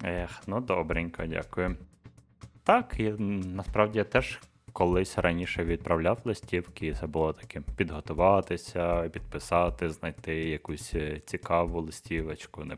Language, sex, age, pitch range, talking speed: Ukrainian, male, 20-39, 80-95 Hz, 110 wpm